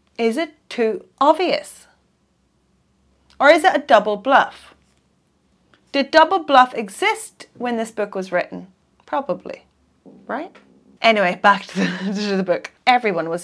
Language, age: English, 30-49